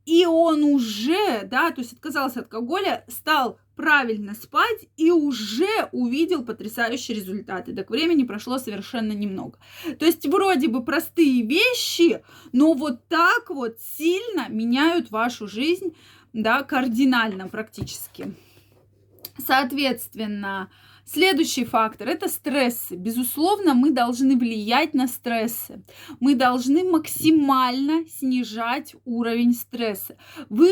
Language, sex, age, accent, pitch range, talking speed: Russian, female, 20-39, native, 225-300 Hz, 110 wpm